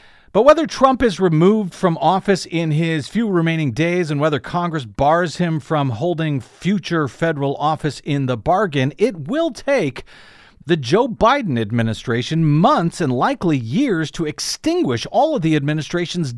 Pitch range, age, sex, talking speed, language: 140-185 Hz, 50-69, male, 155 wpm, English